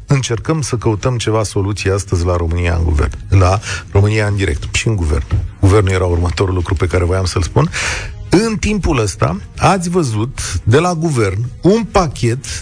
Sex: male